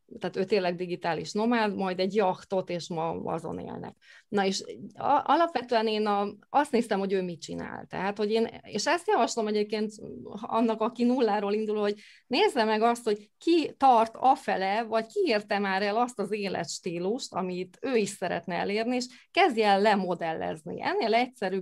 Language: Hungarian